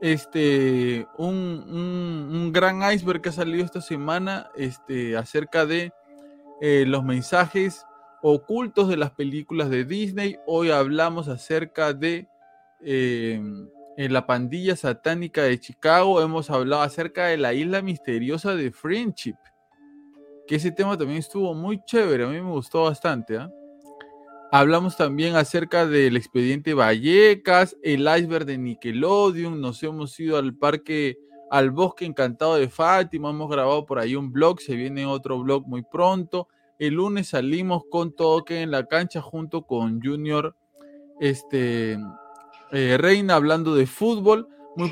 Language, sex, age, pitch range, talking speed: Spanish, male, 20-39, 140-180 Hz, 140 wpm